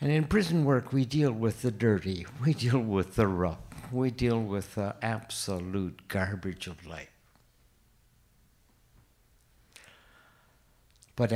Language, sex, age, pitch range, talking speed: English, male, 60-79, 100-135 Hz, 120 wpm